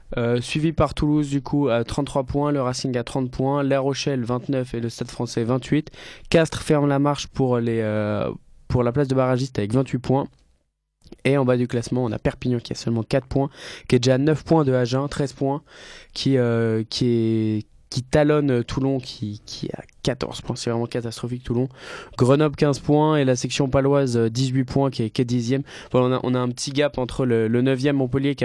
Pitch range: 115-135 Hz